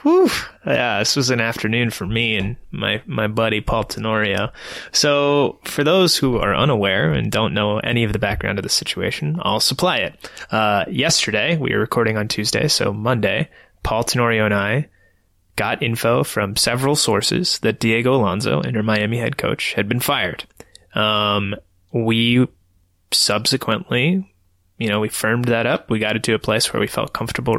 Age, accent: 20-39, American